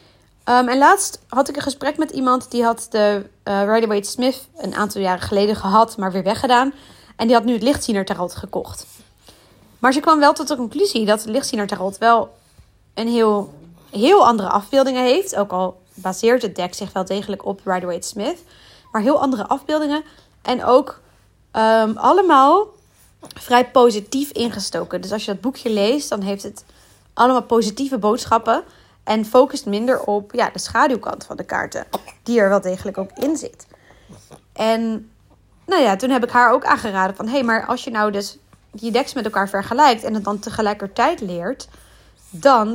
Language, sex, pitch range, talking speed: Dutch, female, 200-255 Hz, 170 wpm